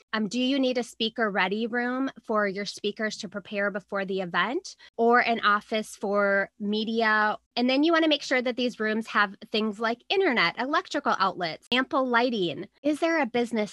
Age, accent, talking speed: 20-39, American, 190 wpm